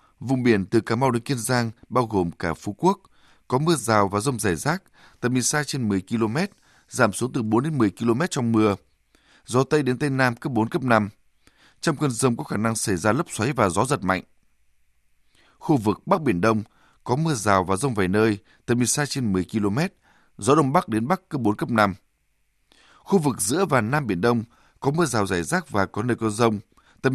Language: Vietnamese